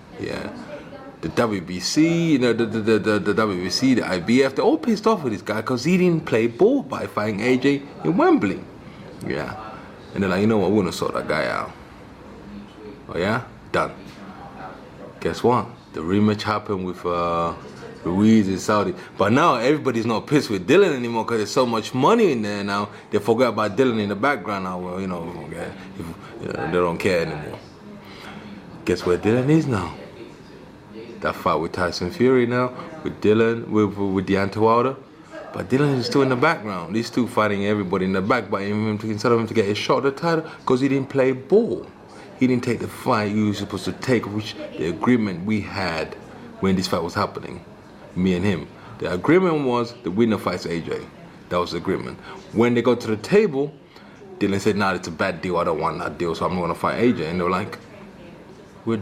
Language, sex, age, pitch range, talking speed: English, male, 30-49, 100-130 Hz, 205 wpm